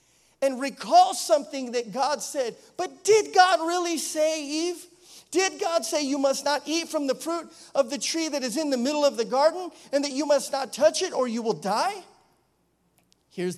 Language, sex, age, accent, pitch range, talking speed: English, male, 40-59, American, 225-300 Hz, 200 wpm